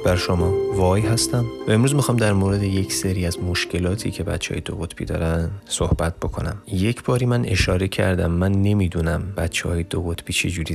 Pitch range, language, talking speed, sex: 85-105 Hz, Persian, 180 wpm, male